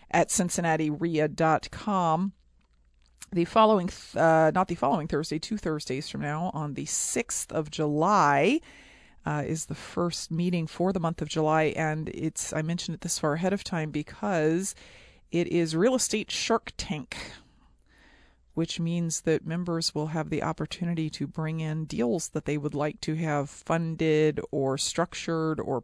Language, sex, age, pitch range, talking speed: English, female, 40-59, 150-170 Hz, 155 wpm